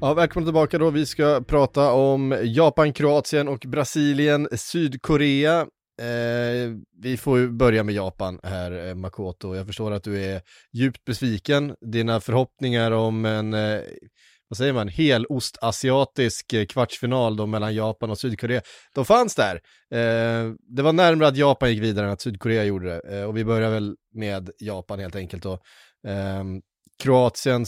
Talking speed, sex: 160 wpm, male